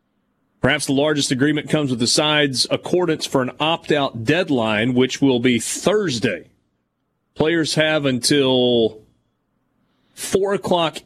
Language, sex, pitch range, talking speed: English, male, 125-150 Hz, 120 wpm